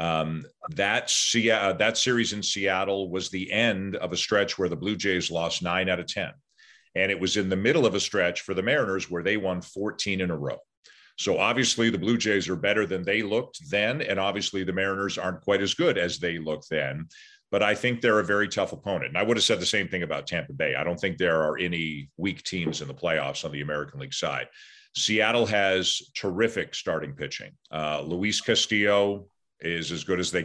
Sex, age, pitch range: male, 40-59, 90-105 Hz